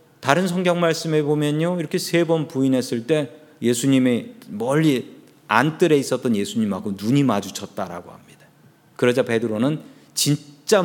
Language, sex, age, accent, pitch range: Korean, male, 40-59, native, 125-185 Hz